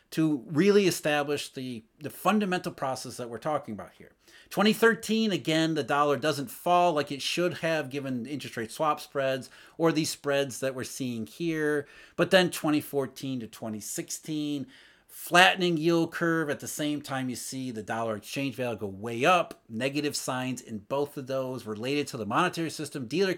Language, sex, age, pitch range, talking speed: English, male, 30-49, 125-175 Hz, 170 wpm